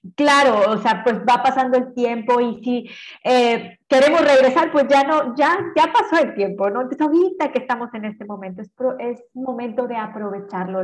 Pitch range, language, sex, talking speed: 230-280 Hz, Spanish, female, 195 wpm